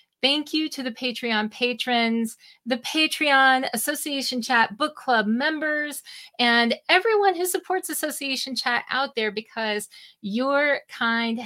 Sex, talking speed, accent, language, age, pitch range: female, 125 wpm, American, English, 40-59, 190-260 Hz